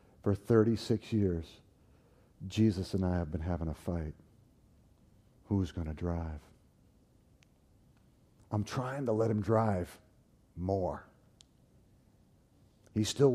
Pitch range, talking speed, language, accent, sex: 95-130 Hz, 110 wpm, English, American, male